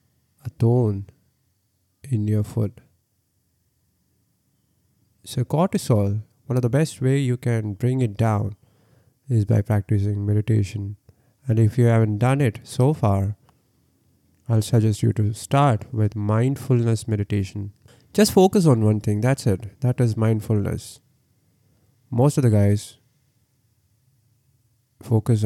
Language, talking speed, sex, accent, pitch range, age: English, 125 wpm, male, Indian, 105-125 Hz, 20-39